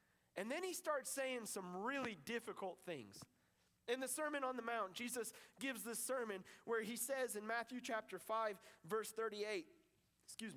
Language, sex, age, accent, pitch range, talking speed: English, male, 30-49, American, 210-265 Hz, 165 wpm